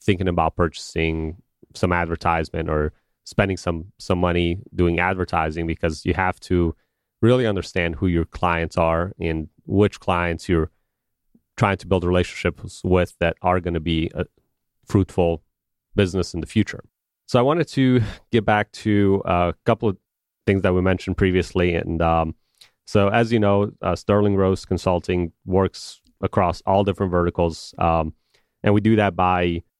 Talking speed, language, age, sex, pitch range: 155 wpm, English, 30-49, male, 85-95 Hz